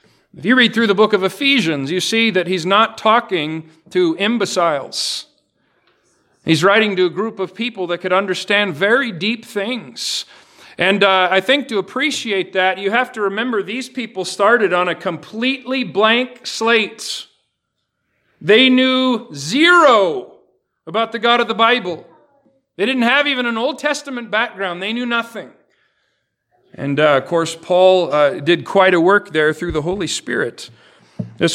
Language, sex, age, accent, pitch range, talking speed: English, male, 40-59, American, 180-230 Hz, 160 wpm